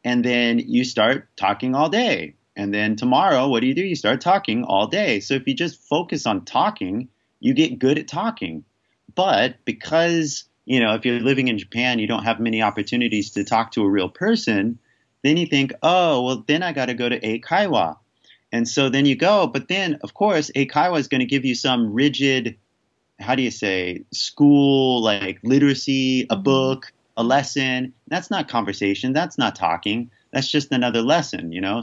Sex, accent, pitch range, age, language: male, American, 105-140 Hz, 30-49, Japanese